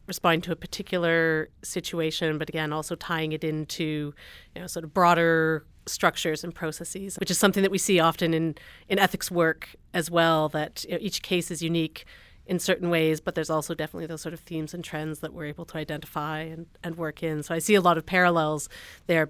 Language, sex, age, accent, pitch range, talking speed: English, female, 30-49, American, 160-185 Hz, 215 wpm